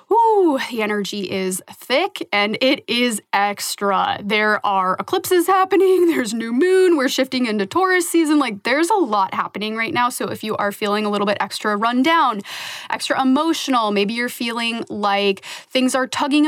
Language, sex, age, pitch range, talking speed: English, female, 20-39, 200-270 Hz, 170 wpm